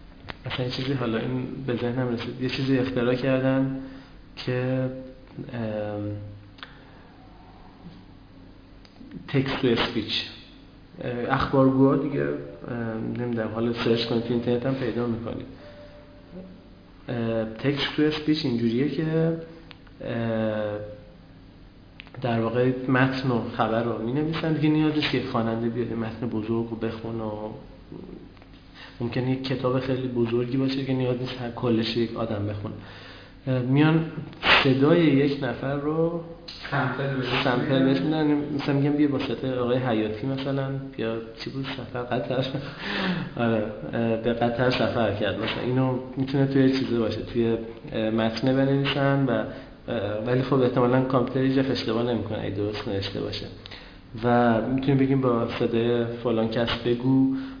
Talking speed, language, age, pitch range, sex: 120 wpm, Persian, 40-59, 110-135 Hz, male